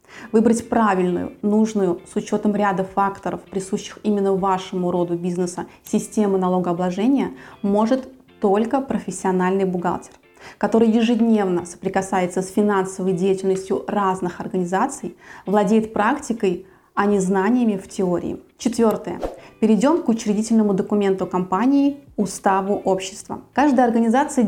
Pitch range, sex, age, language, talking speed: 190-230 Hz, female, 20-39, Russian, 105 wpm